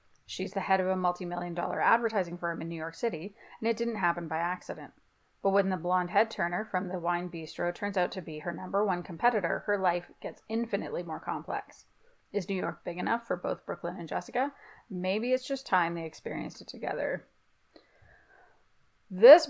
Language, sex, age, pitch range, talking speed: English, female, 30-49, 175-215 Hz, 190 wpm